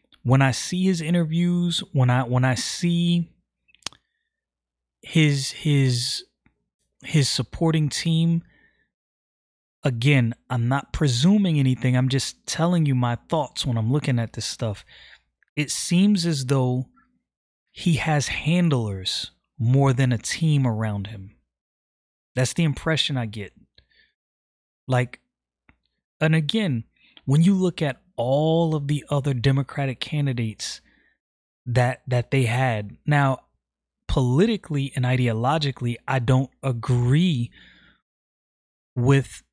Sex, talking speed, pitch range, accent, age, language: male, 115 wpm, 125-160 Hz, American, 20-39, English